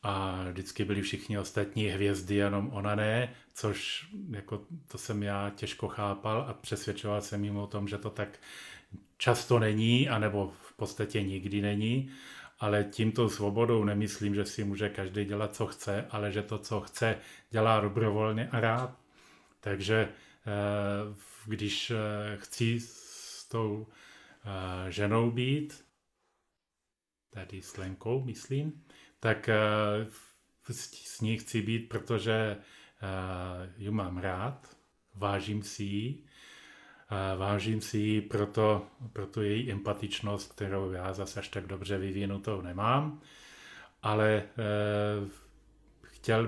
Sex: male